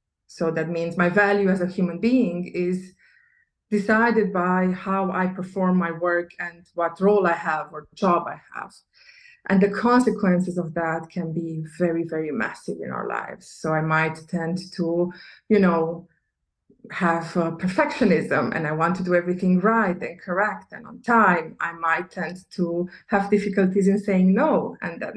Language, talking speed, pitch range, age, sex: English, 170 wpm, 175-205 Hz, 20-39, female